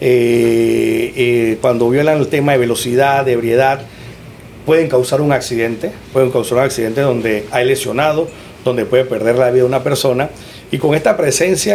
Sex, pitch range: male, 120-155 Hz